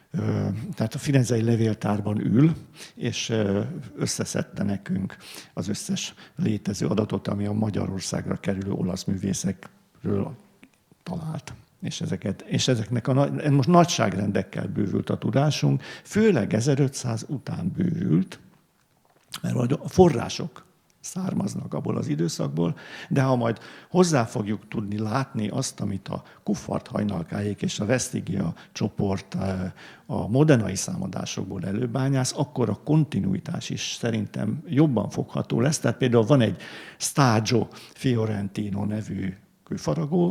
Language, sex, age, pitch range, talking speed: Hungarian, male, 50-69, 105-140 Hz, 110 wpm